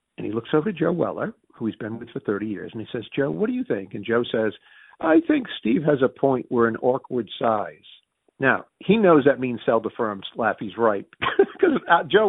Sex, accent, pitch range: male, American, 110-160 Hz